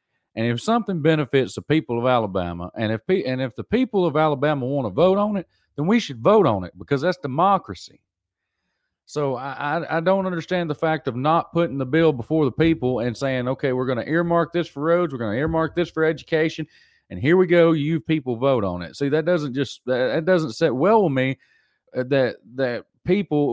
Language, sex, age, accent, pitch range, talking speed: English, male, 30-49, American, 120-160 Hz, 215 wpm